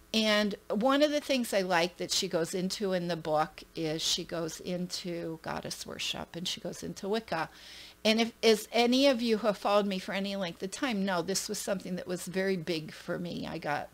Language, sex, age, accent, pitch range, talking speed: English, female, 40-59, American, 170-205 Hz, 225 wpm